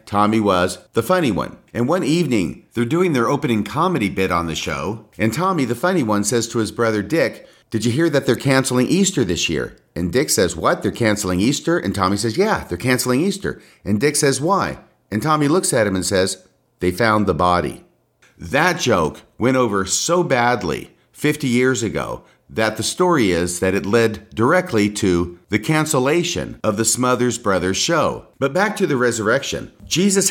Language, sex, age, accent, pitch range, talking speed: English, male, 50-69, American, 100-130 Hz, 190 wpm